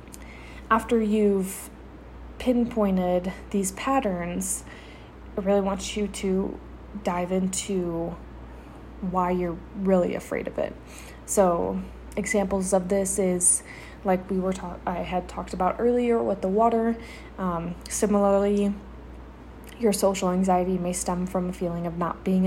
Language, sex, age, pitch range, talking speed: English, female, 20-39, 175-200 Hz, 130 wpm